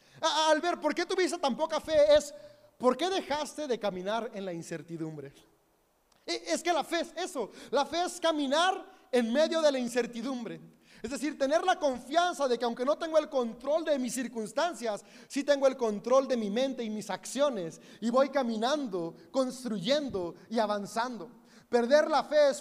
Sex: male